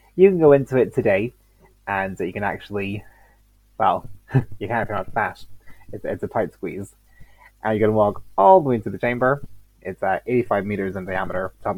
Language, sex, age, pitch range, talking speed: English, male, 20-39, 95-115 Hz, 195 wpm